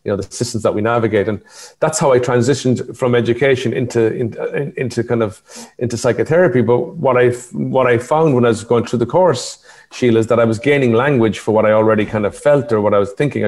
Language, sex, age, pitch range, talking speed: English, male, 40-59, 100-120 Hz, 230 wpm